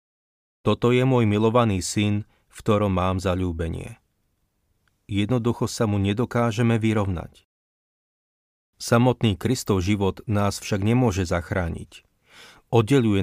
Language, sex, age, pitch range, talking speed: Slovak, male, 40-59, 95-115 Hz, 105 wpm